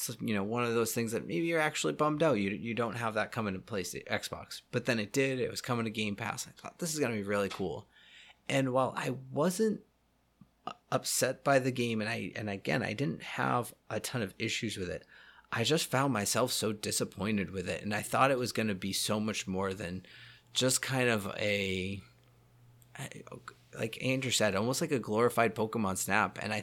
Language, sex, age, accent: English, male, 30-49, American